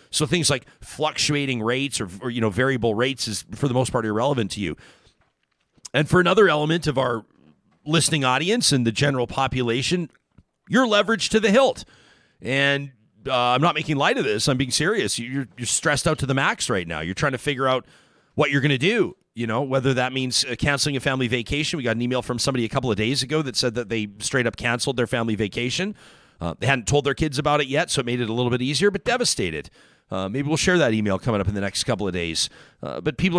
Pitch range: 115-145 Hz